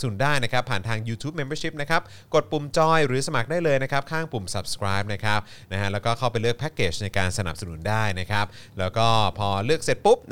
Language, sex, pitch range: Thai, male, 100-130 Hz